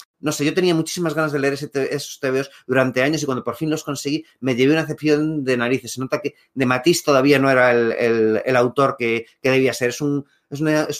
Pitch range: 125-150 Hz